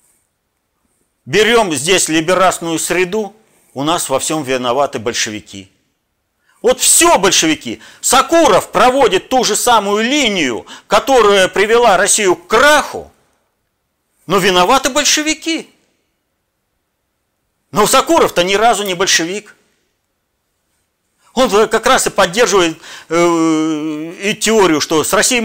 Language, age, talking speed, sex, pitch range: Russian, 50-69, 105 wpm, male, 160-225 Hz